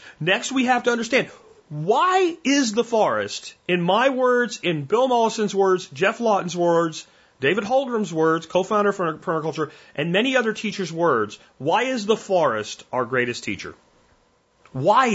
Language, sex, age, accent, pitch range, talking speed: English, male, 40-59, American, 135-210 Hz, 150 wpm